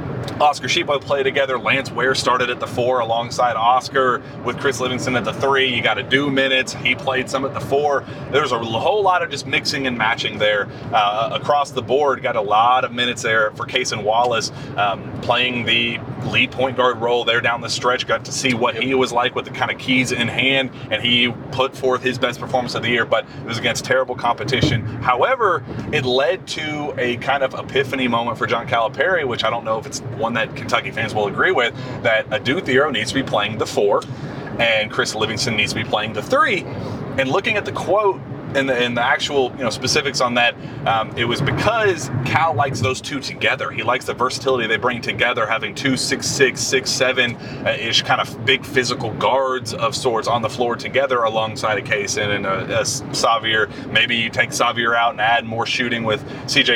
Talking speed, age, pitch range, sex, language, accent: 215 wpm, 30-49, 120-140 Hz, male, English, American